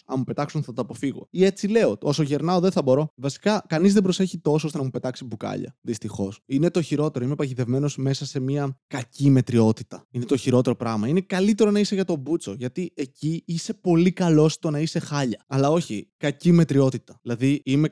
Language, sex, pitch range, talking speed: Greek, male, 135-175 Hz, 205 wpm